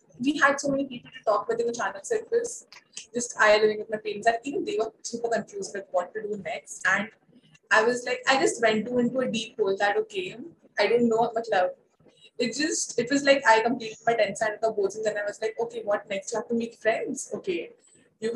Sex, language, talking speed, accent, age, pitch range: female, Hindi, 250 wpm, native, 20-39, 205-250 Hz